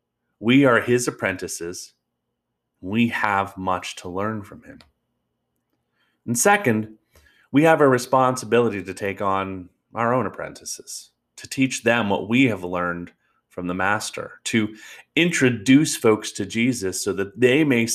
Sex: male